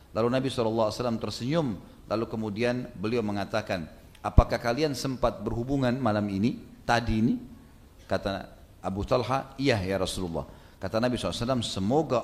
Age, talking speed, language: 40-59, 125 wpm, Indonesian